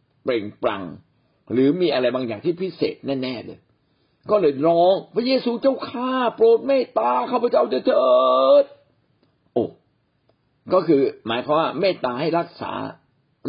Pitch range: 140-210 Hz